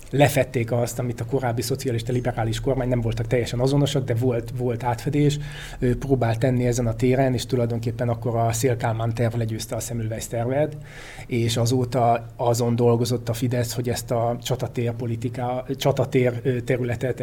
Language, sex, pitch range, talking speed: Hungarian, male, 120-130 Hz, 155 wpm